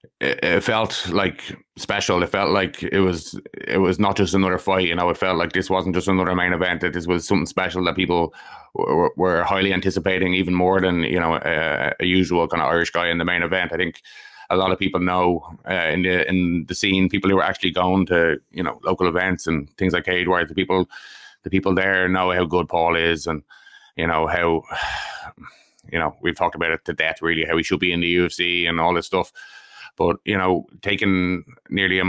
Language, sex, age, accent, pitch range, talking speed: English, male, 20-39, Irish, 85-95 Hz, 225 wpm